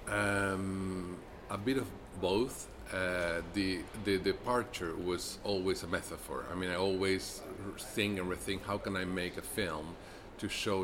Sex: male